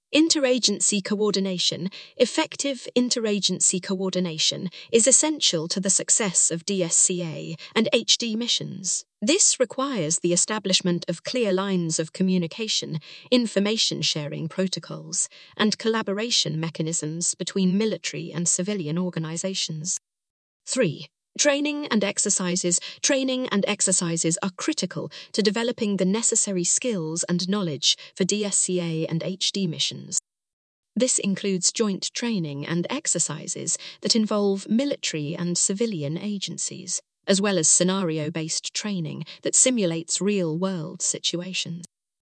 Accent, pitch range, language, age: British, 170-215 Hz, English, 30-49